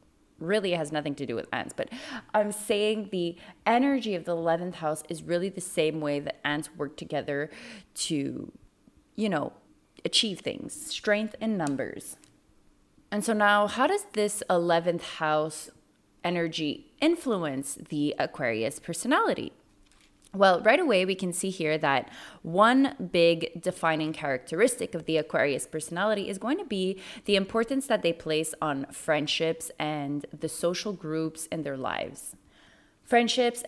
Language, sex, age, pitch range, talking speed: English, female, 20-39, 155-210 Hz, 145 wpm